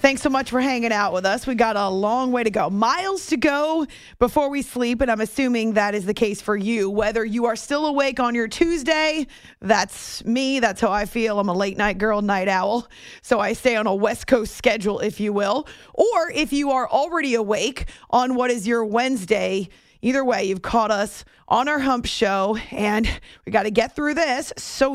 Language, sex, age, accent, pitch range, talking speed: English, female, 30-49, American, 210-265 Hz, 215 wpm